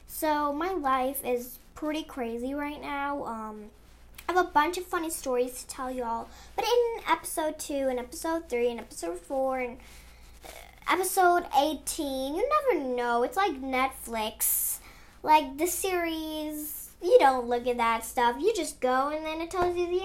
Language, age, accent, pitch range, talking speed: English, 10-29, American, 245-330 Hz, 170 wpm